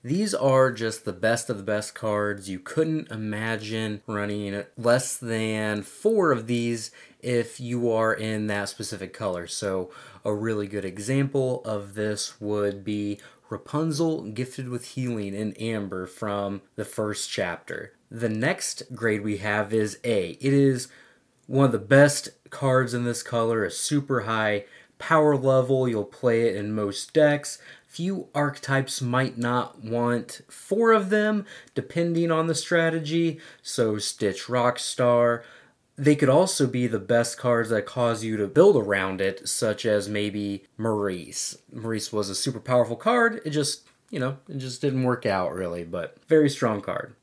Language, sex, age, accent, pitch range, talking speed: English, male, 20-39, American, 105-135 Hz, 160 wpm